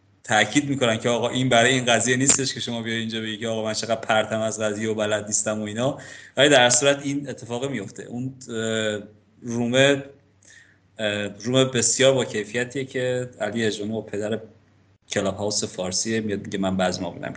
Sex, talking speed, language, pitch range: male, 170 wpm, Persian, 100-130 Hz